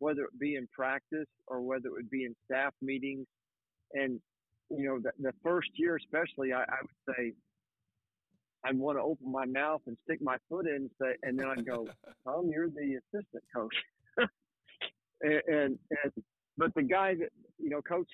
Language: English